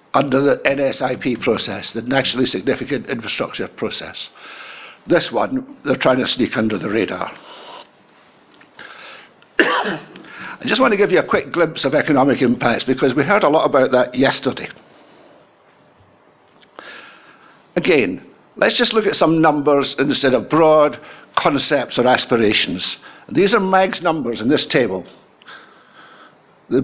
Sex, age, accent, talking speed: male, 60-79, British, 135 wpm